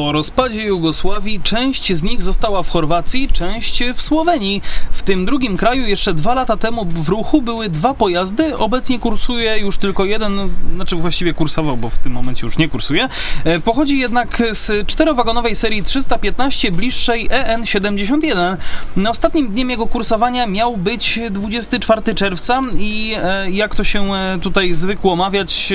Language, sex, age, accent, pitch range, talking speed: Polish, male, 20-39, native, 185-235 Hz, 150 wpm